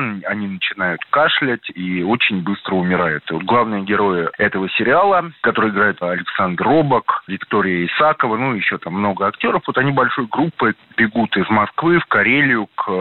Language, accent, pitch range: Russian, native, 100-145 Hz